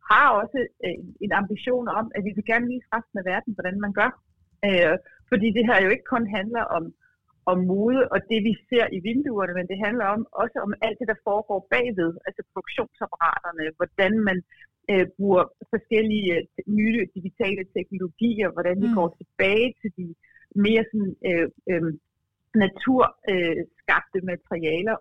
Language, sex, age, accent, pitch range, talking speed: Danish, female, 60-79, native, 180-225 Hz, 155 wpm